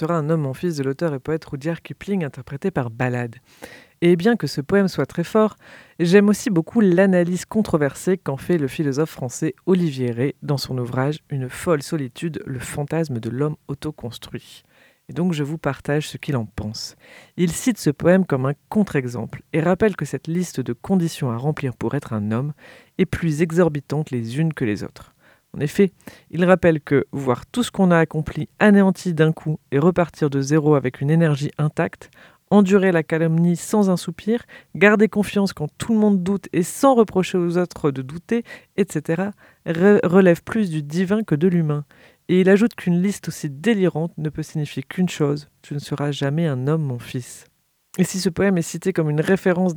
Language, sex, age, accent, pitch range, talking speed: French, female, 40-59, French, 145-185 Hz, 195 wpm